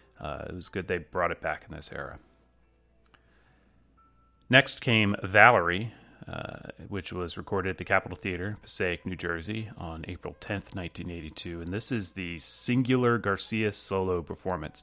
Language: English